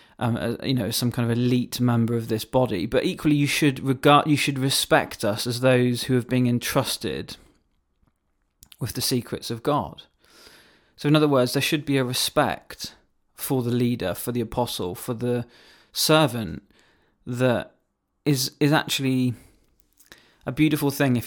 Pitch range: 115-130 Hz